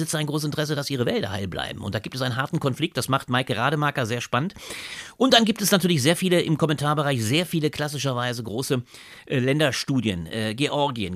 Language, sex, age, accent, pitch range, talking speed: German, male, 40-59, German, 125-170 Hz, 205 wpm